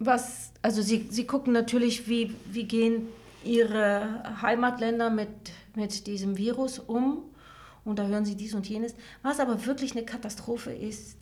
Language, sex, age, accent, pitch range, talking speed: German, female, 40-59, German, 200-235 Hz, 155 wpm